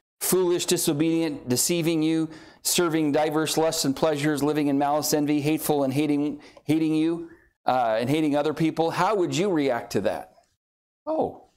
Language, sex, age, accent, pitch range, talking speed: English, male, 40-59, American, 145-215 Hz, 155 wpm